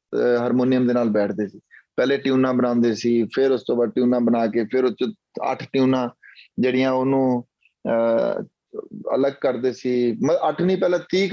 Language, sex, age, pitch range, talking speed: Punjabi, male, 30-49, 125-170 Hz, 150 wpm